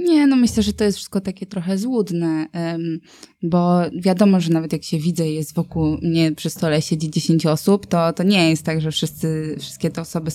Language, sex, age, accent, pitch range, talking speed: Polish, female, 20-39, native, 155-195 Hz, 210 wpm